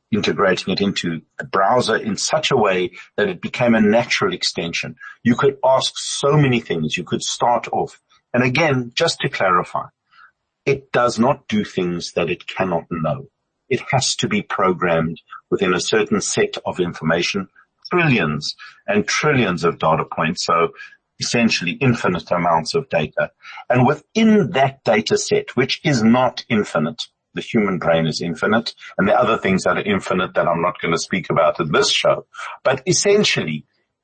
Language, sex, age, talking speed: English, male, 50-69, 165 wpm